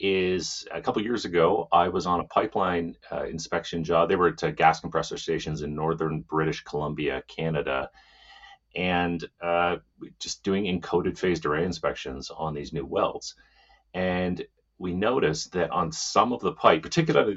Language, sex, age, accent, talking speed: English, male, 30-49, American, 165 wpm